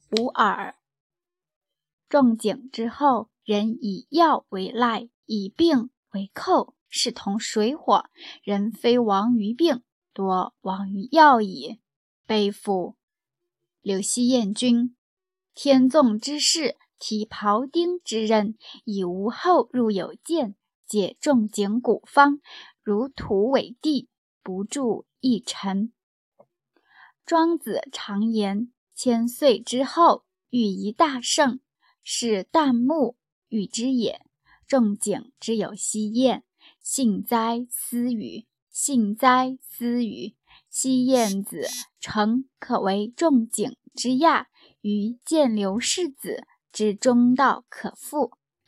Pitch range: 210-275 Hz